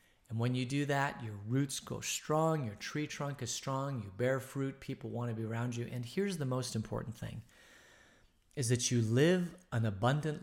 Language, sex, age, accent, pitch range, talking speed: English, male, 40-59, American, 110-145 Hz, 200 wpm